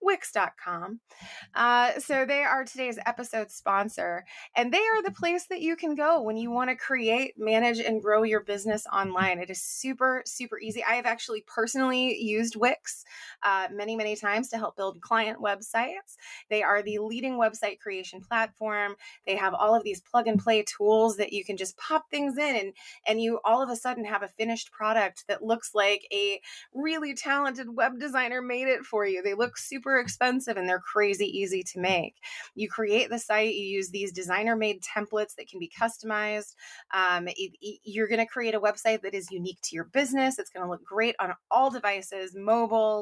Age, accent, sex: 20-39, American, female